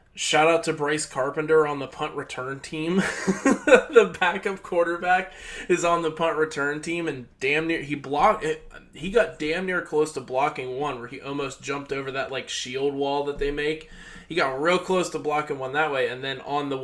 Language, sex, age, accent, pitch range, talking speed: English, male, 20-39, American, 135-165 Hz, 205 wpm